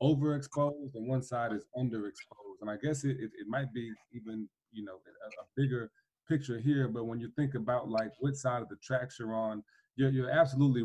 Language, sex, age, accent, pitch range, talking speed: English, male, 20-39, American, 115-135 Hz, 210 wpm